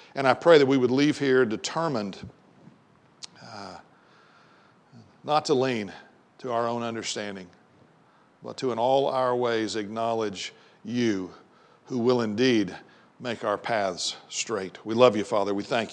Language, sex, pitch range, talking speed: English, male, 125-165 Hz, 145 wpm